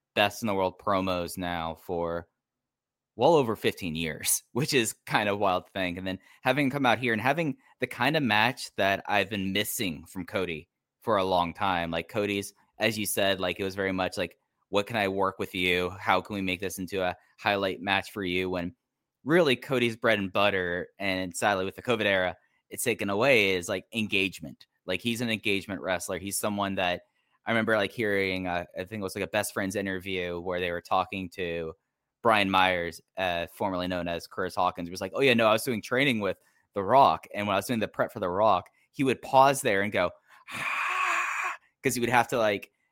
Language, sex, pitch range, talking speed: English, male, 90-110 Hz, 220 wpm